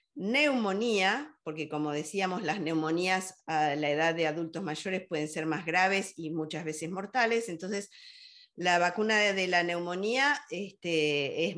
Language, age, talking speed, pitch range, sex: Spanish, 50-69, 140 wpm, 150-215 Hz, female